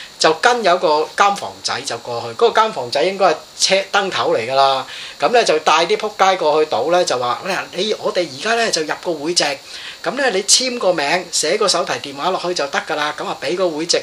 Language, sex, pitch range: Chinese, male, 160-230 Hz